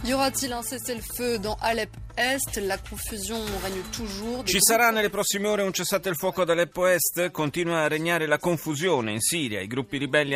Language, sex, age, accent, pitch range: Italian, male, 30-49, native, 115-165 Hz